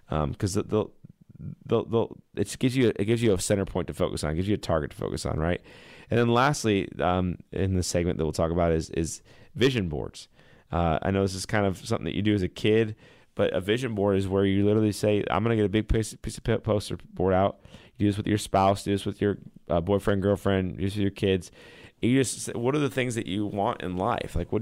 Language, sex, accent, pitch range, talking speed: English, male, American, 95-110 Hz, 255 wpm